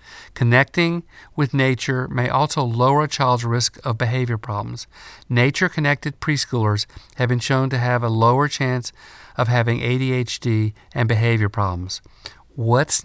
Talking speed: 140 wpm